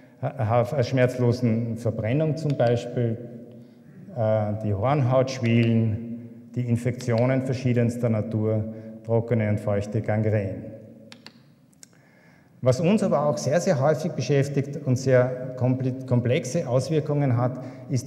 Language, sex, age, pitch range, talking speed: German, male, 50-69, 115-140 Hz, 95 wpm